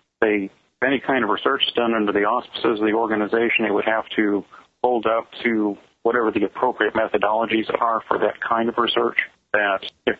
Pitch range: 105-120 Hz